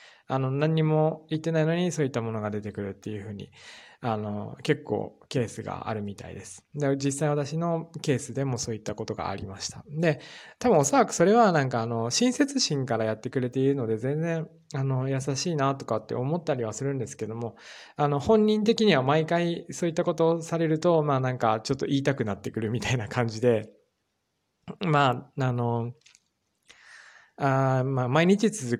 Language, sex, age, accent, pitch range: Japanese, male, 20-39, native, 115-155 Hz